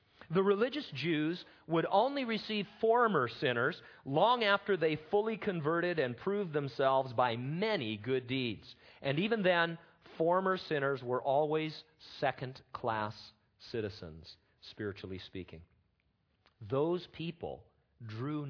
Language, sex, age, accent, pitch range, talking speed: English, male, 40-59, American, 105-160 Hz, 110 wpm